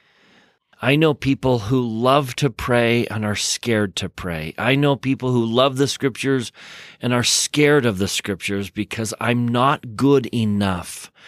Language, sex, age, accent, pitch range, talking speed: English, male, 40-59, American, 110-140 Hz, 160 wpm